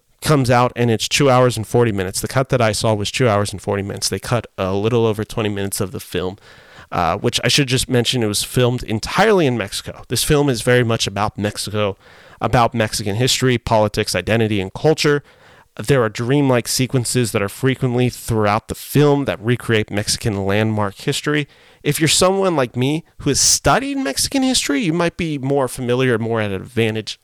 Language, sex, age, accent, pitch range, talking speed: English, male, 30-49, American, 105-140 Hz, 200 wpm